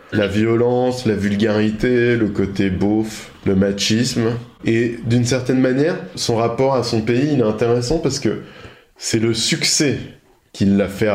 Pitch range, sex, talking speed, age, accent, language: 95-115 Hz, male, 155 wpm, 20-39, French, French